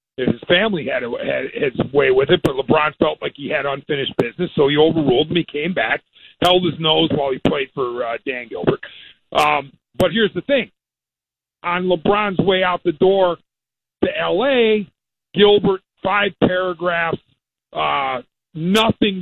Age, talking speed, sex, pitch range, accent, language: 50-69, 155 wpm, male, 160-190 Hz, American, English